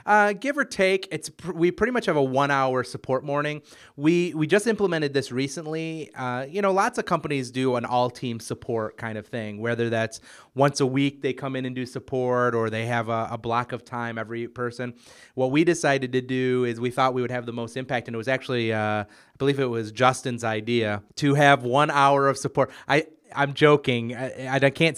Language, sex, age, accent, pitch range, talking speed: English, male, 30-49, American, 120-145 Hz, 215 wpm